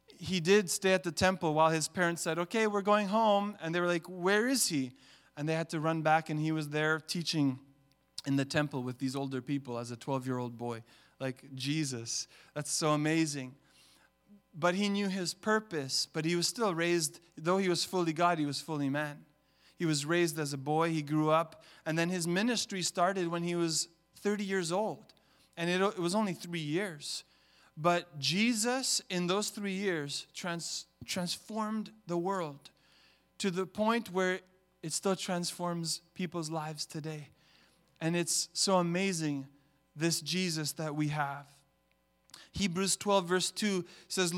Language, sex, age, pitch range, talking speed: English, male, 30-49, 155-195 Hz, 175 wpm